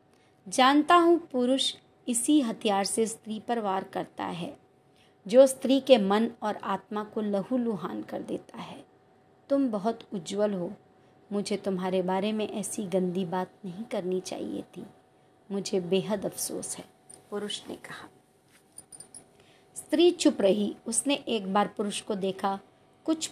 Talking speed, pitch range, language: 140 wpm, 195-235 Hz, Hindi